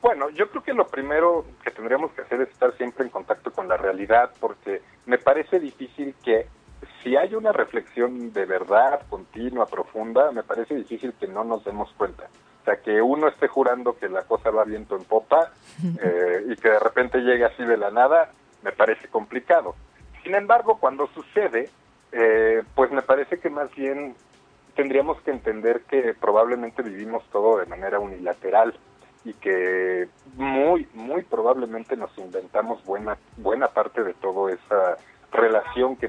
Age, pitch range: 40-59, 110-145 Hz